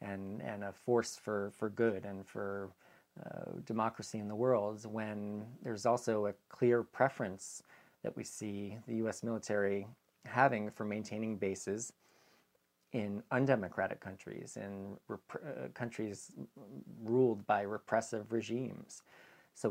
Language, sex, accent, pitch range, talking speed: English, male, American, 100-115 Hz, 120 wpm